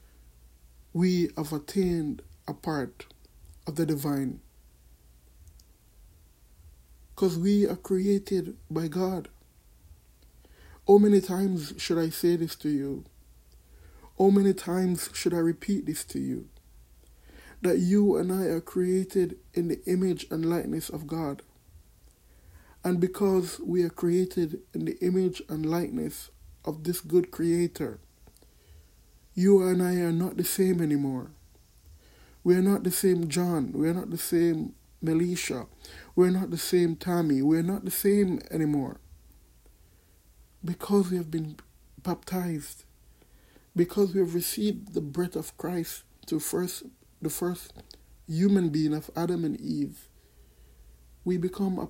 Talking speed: 135 wpm